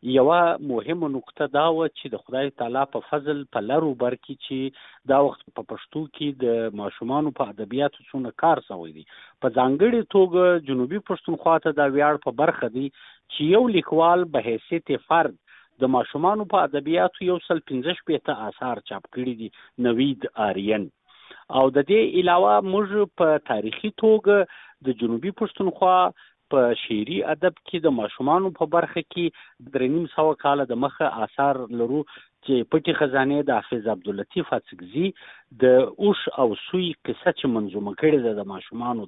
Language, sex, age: Urdu, male, 50-69